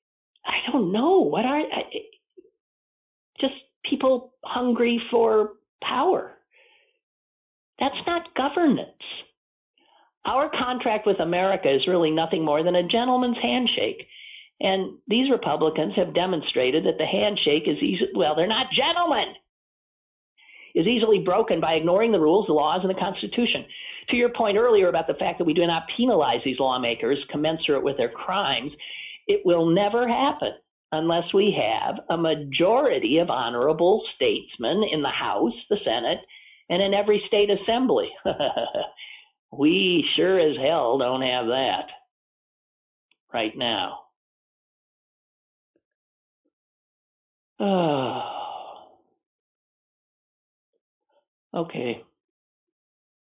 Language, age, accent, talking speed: English, 50-69, American, 115 wpm